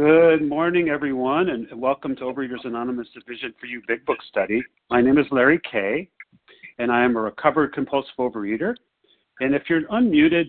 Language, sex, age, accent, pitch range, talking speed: English, male, 40-59, American, 115-160 Hz, 170 wpm